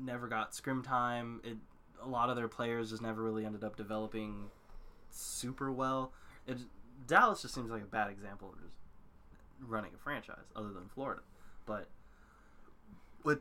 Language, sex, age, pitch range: English, male, 20-39, 110-135 Hz